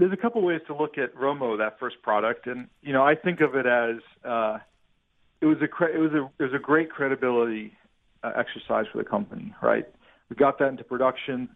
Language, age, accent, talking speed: English, 40-59, American, 230 wpm